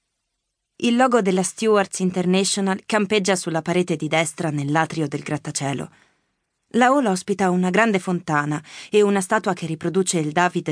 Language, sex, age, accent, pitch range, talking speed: Italian, female, 20-39, native, 165-220 Hz, 145 wpm